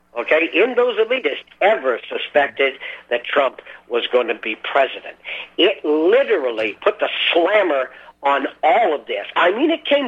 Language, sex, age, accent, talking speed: English, male, 50-69, American, 155 wpm